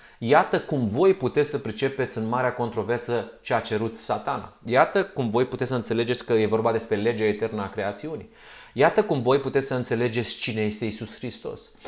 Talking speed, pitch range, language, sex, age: 185 wpm, 110-160 Hz, Romanian, male, 30-49